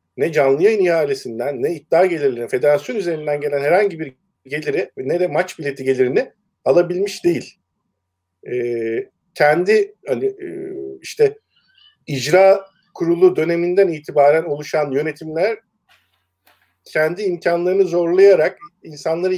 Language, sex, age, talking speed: Turkish, male, 50-69, 105 wpm